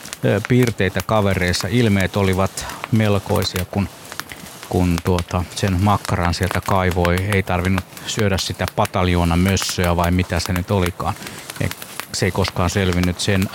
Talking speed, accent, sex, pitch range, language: 125 wpm, native, male, 95-120 Hz, Finnish